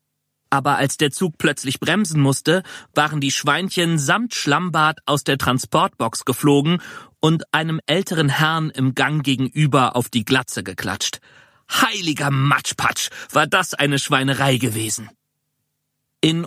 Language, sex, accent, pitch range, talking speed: German, male, German, 130-165 Hz, 130 wpm